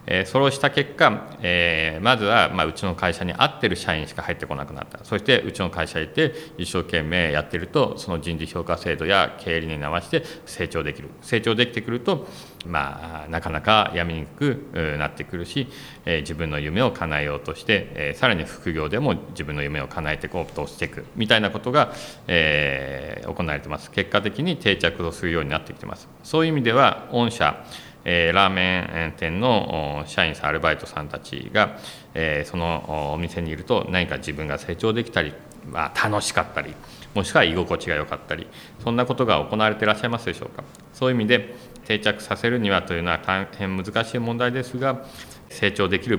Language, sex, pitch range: Japanese, male, 80-110 Hz